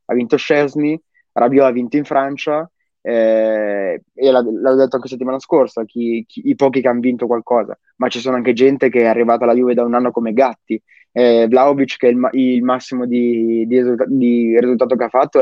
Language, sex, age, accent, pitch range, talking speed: Italian, male, 20-39, native, 115-140 Hz, 200 wpm